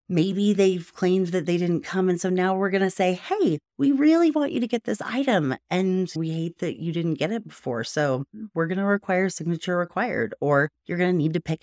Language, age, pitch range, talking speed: English, 30-49, 150-210 Hz, 235 wpm